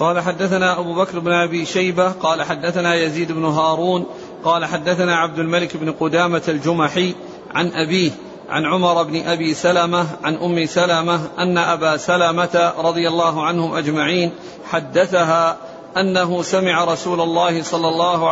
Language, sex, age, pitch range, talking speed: Arabic, male, 50-69, 170-185 Hz, 140 wpm